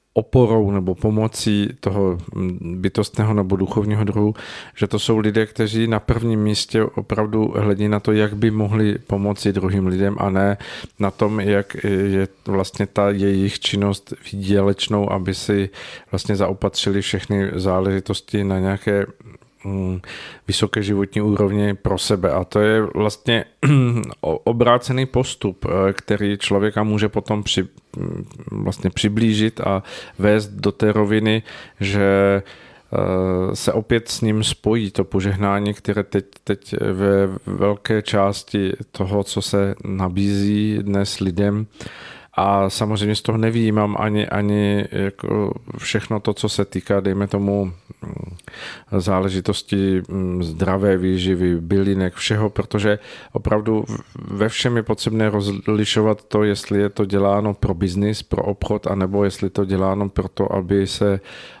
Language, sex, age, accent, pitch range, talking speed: Czech, male, 40-59, native, 100-110 Hz, 130 wpm